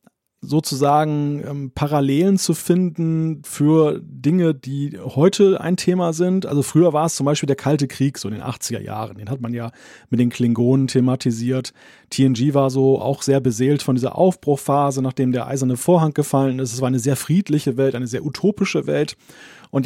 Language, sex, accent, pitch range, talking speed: German, male, German, 130-155 Hz, 180 wpm